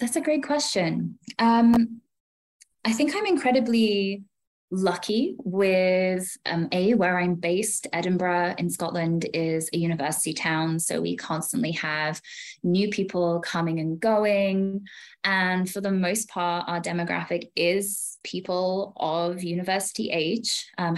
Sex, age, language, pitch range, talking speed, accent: female, 20-39, English, 170-225 Hz, 130 wpm, British